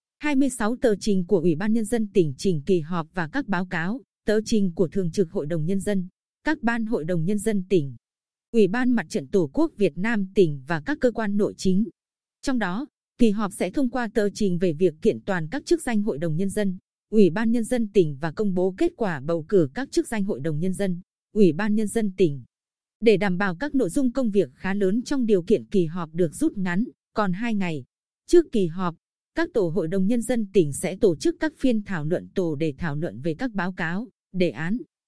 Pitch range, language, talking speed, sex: 185-230 Hz, Vietnamese, 240 wpm, female